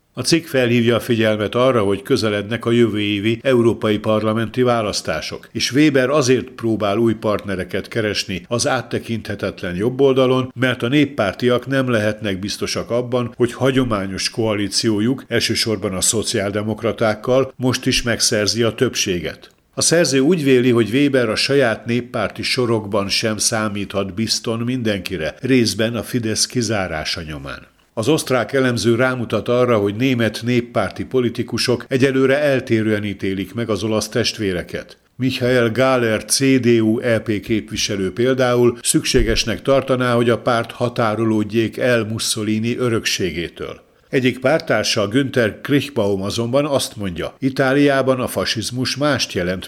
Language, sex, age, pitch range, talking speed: Hungarian, male, 60-79, 105-130 Hz, 125 wpm